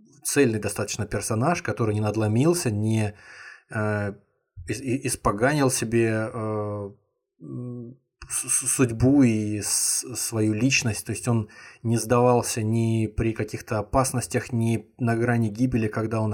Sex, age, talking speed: male, 20-39, 115 wpm